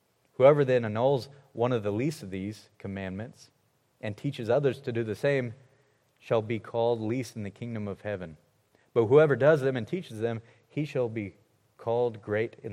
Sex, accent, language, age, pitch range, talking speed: male, American, English, 30-49, 110-135 Hz, 185 wpm